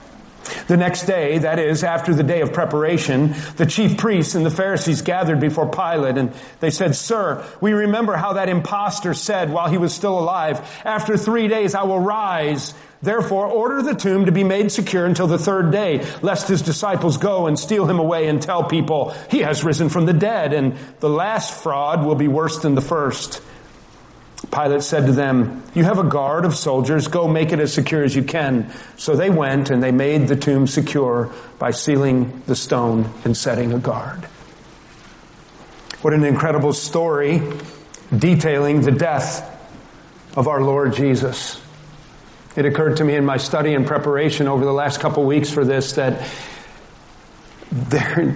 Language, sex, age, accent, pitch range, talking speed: English, male, 40-59, American, 140-175 Hz, 180 wpm